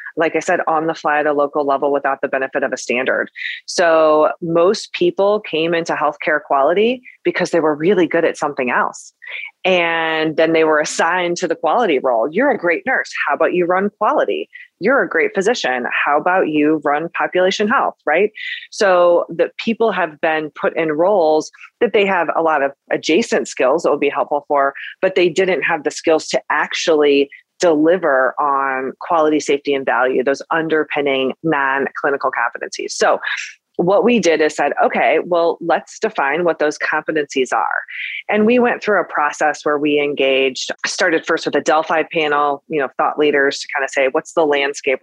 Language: English